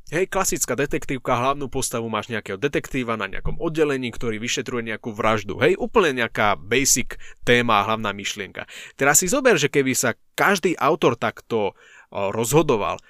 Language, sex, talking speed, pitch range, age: Slovak, male, 145 wpm, 115-140 Hz, 20-39